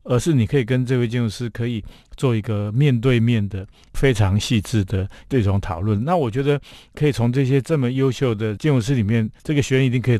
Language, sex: Chinese, male